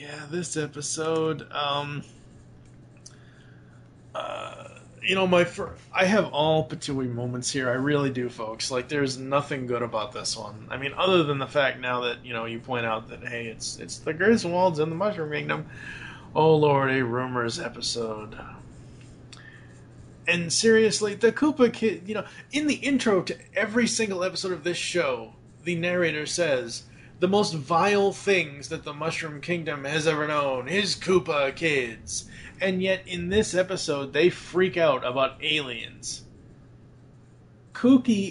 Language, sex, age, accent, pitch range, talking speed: English, male, 20-39, American, 125-180 Hz, 155 wpm